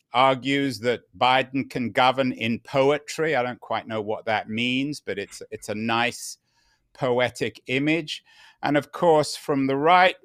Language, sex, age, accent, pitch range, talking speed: English, male, 50-69, British, 120-155 Hz, 160 wpm